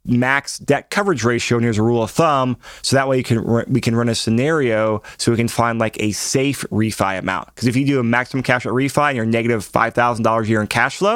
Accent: American